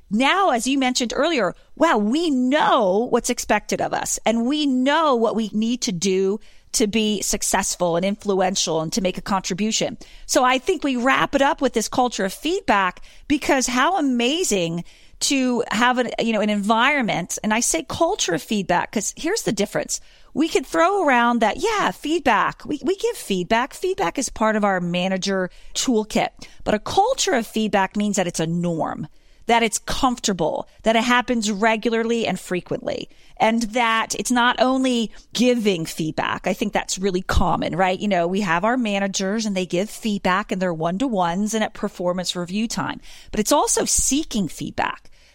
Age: 40-59